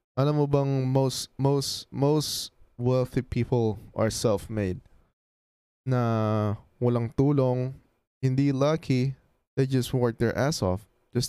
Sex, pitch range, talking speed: male, 105-130 Hz, 110 wpm